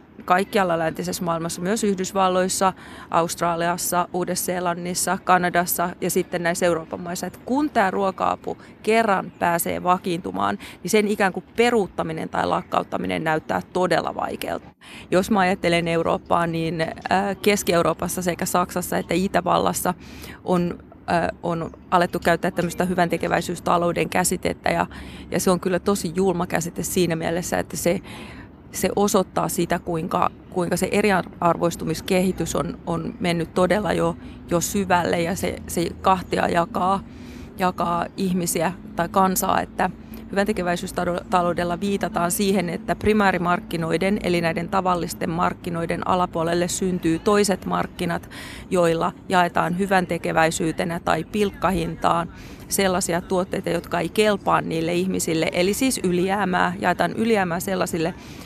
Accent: native